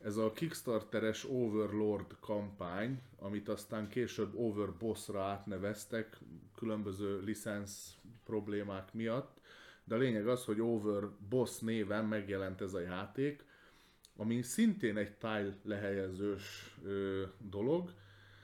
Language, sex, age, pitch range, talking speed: Hungarian, male, 30-49, 100-115 Hz, 100 wpm